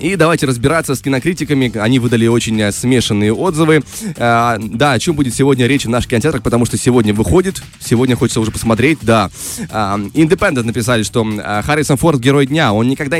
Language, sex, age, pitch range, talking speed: Russian, male, 20-39, 120-155 Hz, 180 wpm